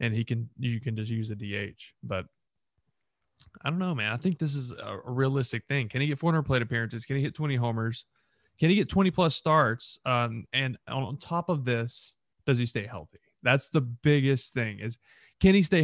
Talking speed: 210 wpm